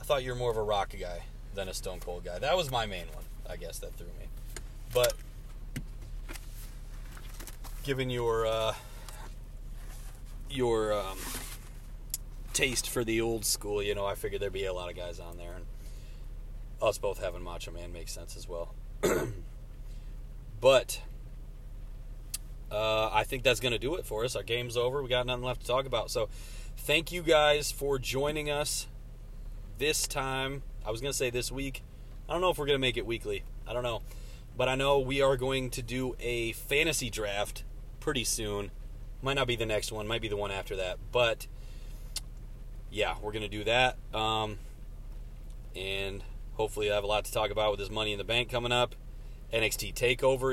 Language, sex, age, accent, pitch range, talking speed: English, male, 30-49, American, 105-130 Hz, 190 wpm